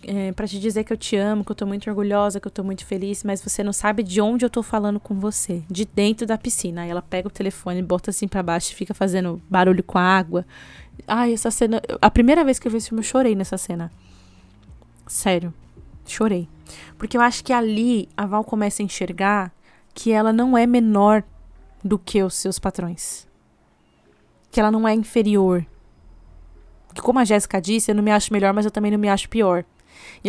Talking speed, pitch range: 215 wpm, 190-230 Hz